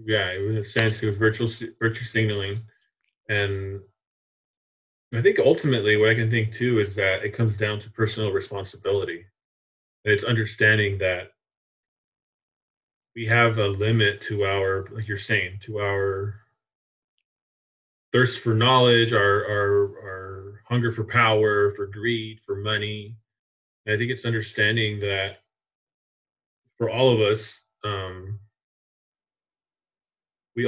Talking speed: 125 wpm